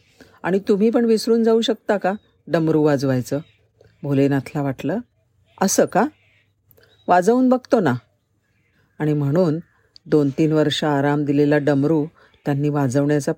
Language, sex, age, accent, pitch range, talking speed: Marathi, female, 50-69, native, 145-180 Hz, 115 wpm